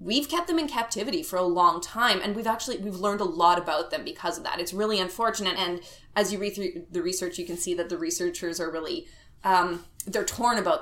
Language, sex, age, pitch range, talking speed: English, female, 20-39, 175-225 Hz, 240 wpm